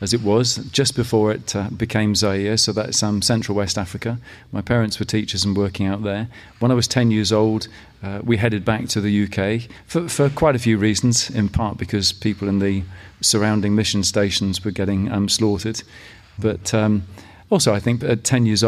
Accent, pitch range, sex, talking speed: British, 100-115 Hz, male, 200 wpm